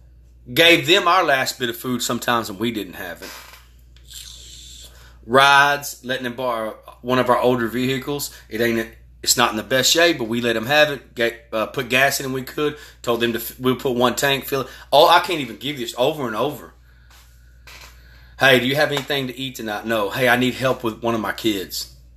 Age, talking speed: 30-49, 220 wpm